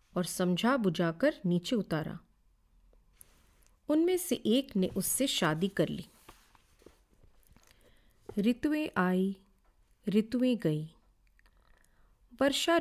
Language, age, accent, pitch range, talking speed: Hindi, 40-59, native, 170-250 Hz, 85 wpm